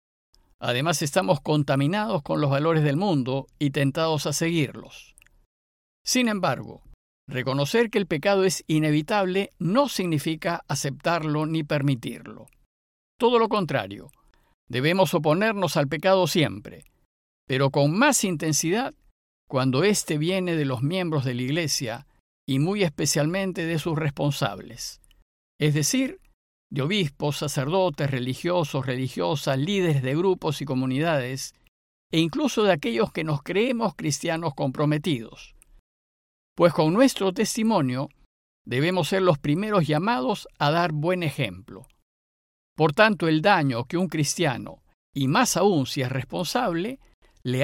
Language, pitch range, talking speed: Spanish, 135-185 Hz, 125 wpm